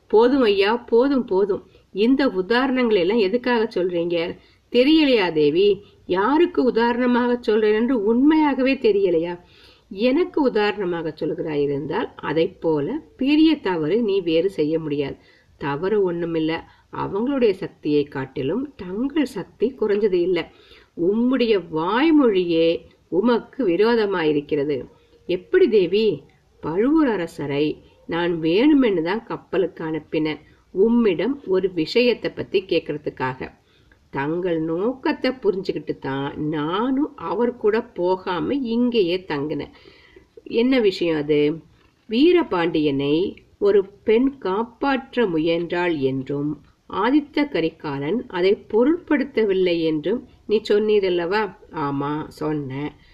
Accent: native